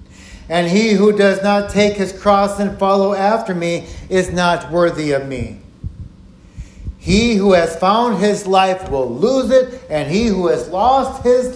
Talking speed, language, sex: 165 wpm, English, male